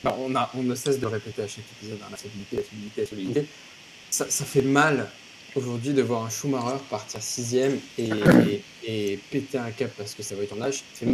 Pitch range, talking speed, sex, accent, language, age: 110-135 Hz, 235 wpm, male, French, French, 20-39